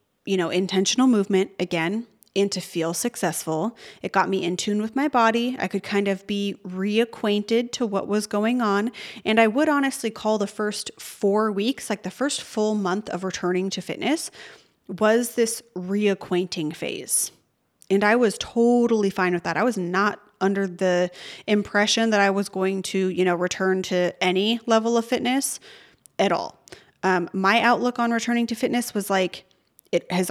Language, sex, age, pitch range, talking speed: English, female, 30-49, 190-225 Hz, 175 wpm